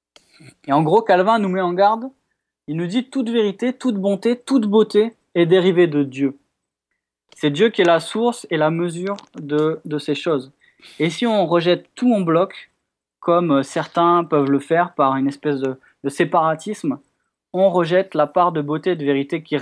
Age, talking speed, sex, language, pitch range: 20-39, 195 wpm, male, French, 155-205 Hz